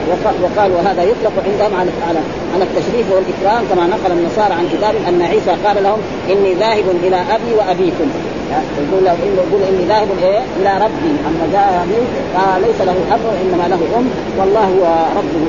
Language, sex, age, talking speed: Arabic, female, 40-59, 165 wpm